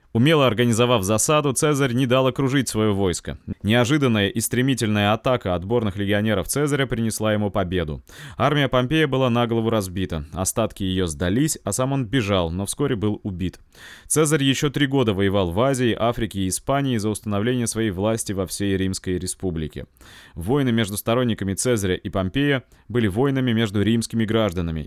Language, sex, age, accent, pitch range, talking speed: Russian, male, 20-39, native, 100-130 Hz, 155 wpm